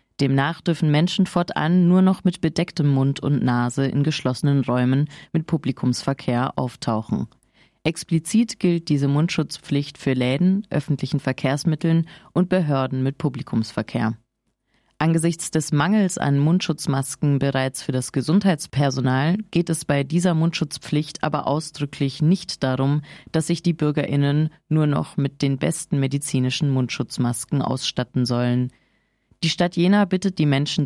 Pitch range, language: 135-165 Hz, German